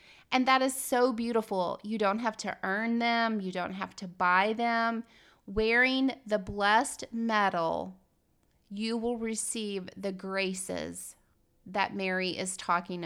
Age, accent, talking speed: 30-49, American, 140 wpm